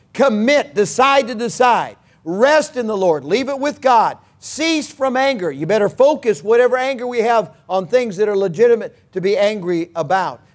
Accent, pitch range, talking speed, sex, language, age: American, 170-235 Hz, 175 wpm, male, English, 50-69